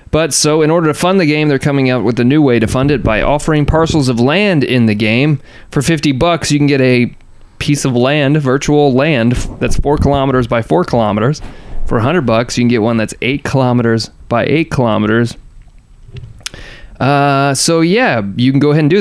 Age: 30-49